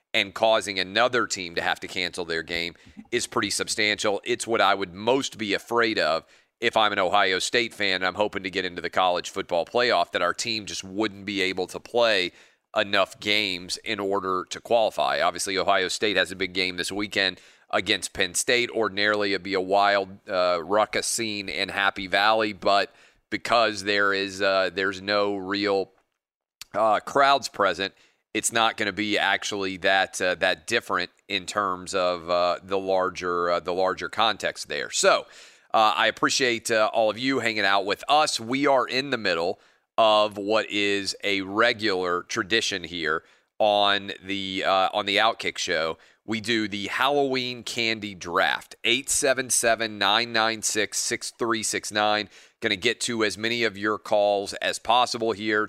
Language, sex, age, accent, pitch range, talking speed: English, male, 40-59, American, 95-110 Hz, 170 wpm